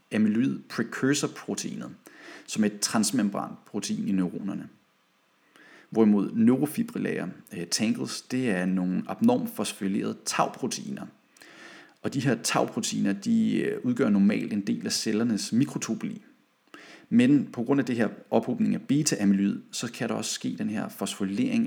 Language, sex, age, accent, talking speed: Danish, male, 30-49, native, 140 wpm